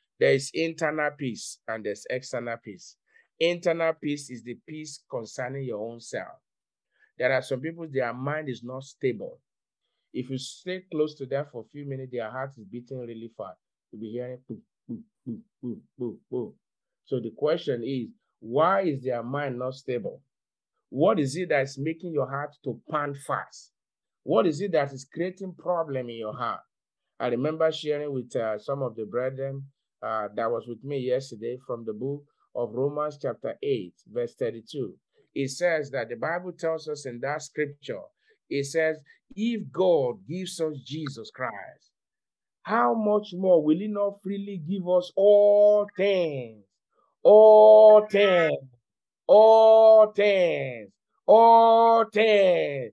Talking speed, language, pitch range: 160 wpm, English, 130-195 Hz